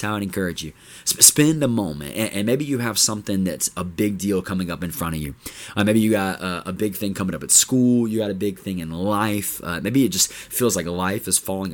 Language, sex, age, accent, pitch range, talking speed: English, male, 20-39, American, 95-120 Hz, 255 wpm